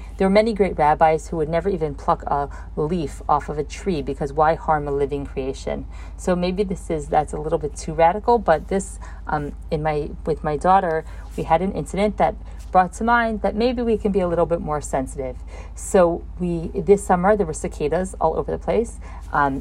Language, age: English, 40-59